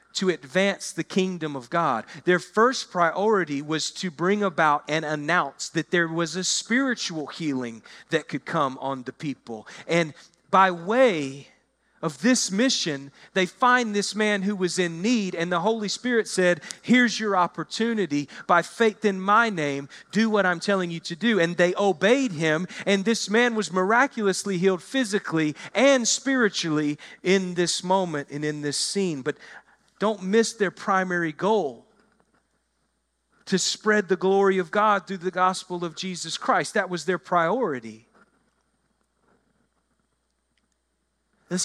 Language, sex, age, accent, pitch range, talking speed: English, male, 40-59, American, 160-210 Hz, 150 wpm